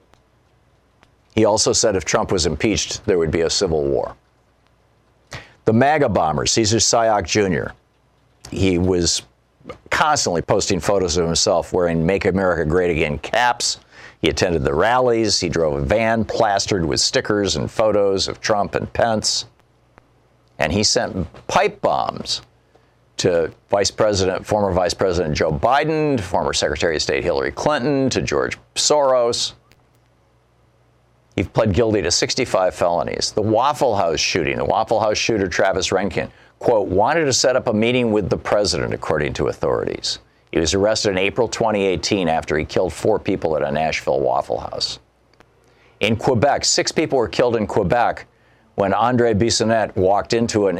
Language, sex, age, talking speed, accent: English, male, 50-69, 155 wpm, American